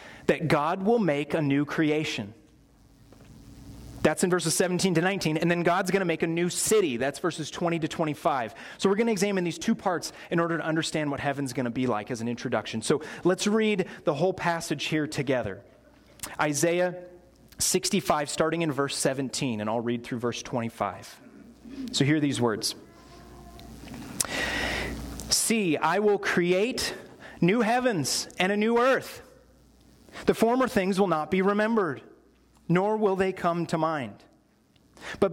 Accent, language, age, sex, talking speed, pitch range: American, English, 30-49, male, 160 wpm, 150-195 Hz